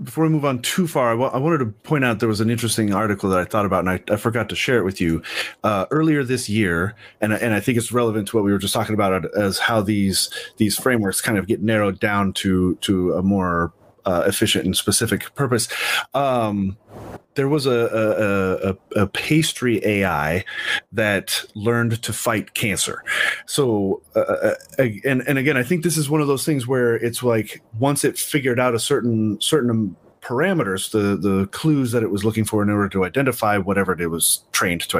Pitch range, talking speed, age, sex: 100-125 Hz, 210 wpm, 30-49, male